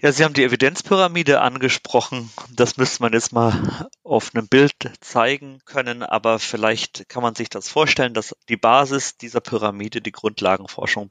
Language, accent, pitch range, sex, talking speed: German, German, 110-125 Hz, male, 160 wpm